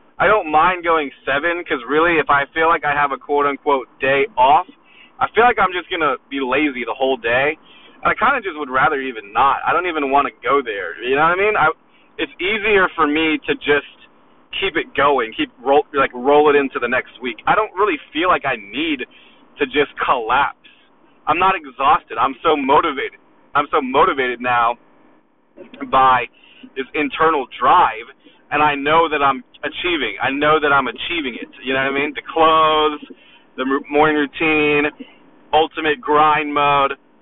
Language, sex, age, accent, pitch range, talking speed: English, male, 30-49, American, 145-200 Hz, 190 wpm